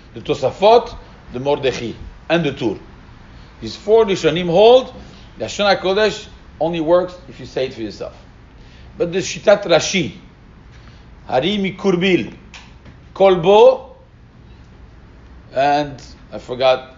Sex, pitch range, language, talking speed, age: male, 130-195 Hz, English, 115 wpm, 40-59